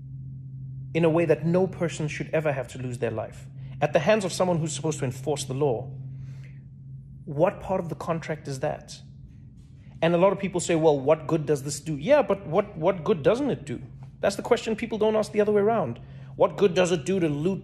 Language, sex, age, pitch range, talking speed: English, male, 30-49, 135-195 Hz, 230 wpm